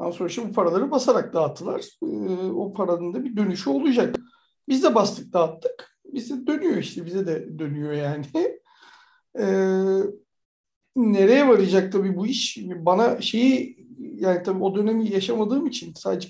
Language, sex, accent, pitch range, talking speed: Turkish, male, native, 185-245 Hz, 145 wpm